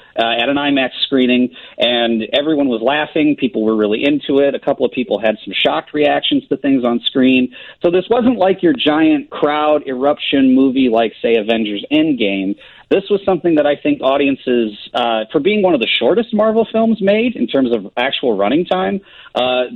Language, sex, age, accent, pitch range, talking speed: English, male, 40-59, American, 115-150 Hz, 190 wpm